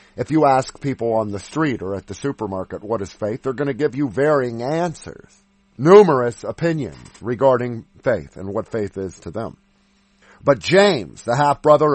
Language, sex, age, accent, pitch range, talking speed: English, male, 50-69, American, 125-185 Hz, 175 wpm